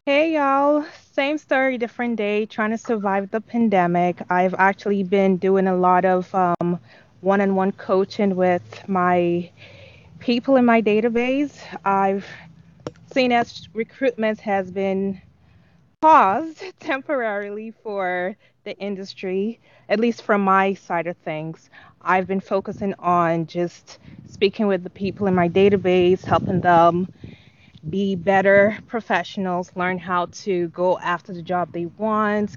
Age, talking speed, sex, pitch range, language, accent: 20-39, 130 wpm, female, 175-210 Hz, English, American